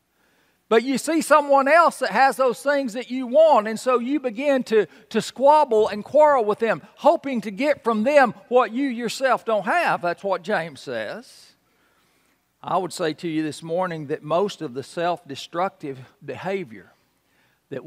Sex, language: male, English